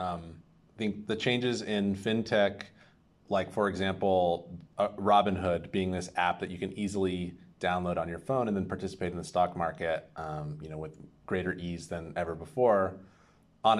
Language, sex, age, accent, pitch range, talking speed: English, male, 30-49, American, 85-100 Hz, 175 wpm